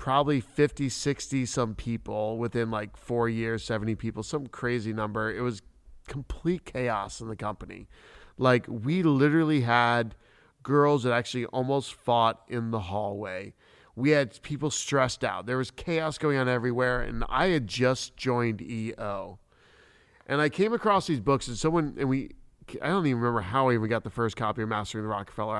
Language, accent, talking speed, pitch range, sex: English, American, 175 wpm, 115-150 Hz, male